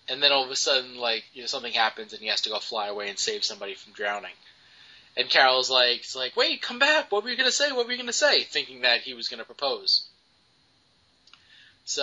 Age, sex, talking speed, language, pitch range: 20-39, male, 255 wpm, English, 125-160 Hz